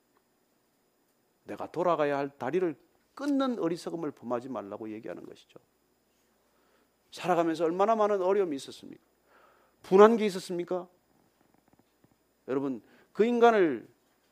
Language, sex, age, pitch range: Korean, male, 40-59, 165-265 Hz